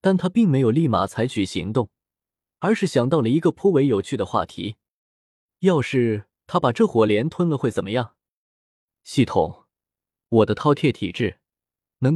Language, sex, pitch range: Chinese, male, 105-150 Hz